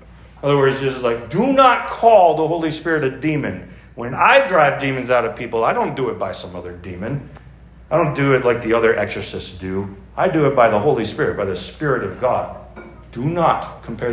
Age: 40-59